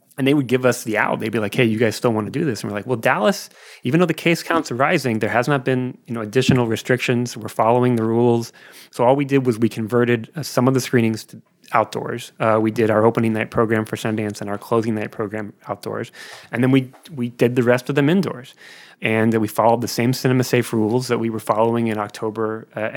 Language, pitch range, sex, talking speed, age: English, 110-125 Hz, male, 250 wpm, 30-49